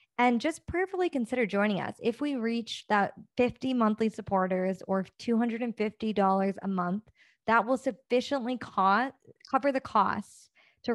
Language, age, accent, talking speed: English, 20-39, American, 130 wpm